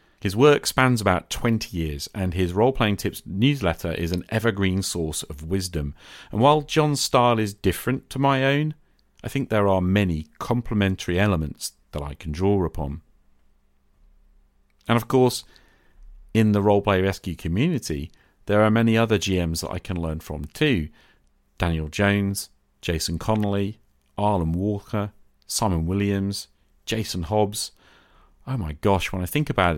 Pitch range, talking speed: 80-105 Hz, 150 wpm